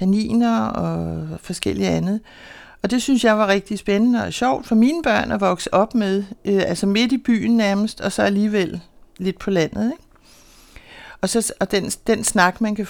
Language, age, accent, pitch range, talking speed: Danish, 60-79, native, 185-235 Hz, 185 wpm